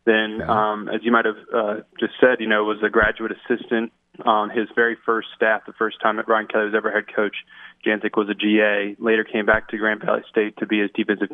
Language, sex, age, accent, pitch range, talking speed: English, male, 20-39, American, 110-120 Hz, 240 wpm